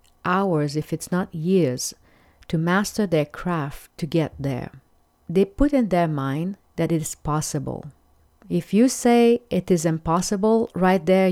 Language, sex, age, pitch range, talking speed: English, female, 40-59, 150-180 Hz, 155 wpm